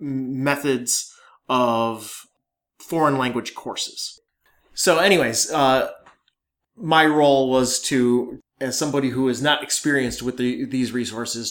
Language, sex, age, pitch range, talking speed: English, male, 30-49, 120-140 Hz, 115 wpm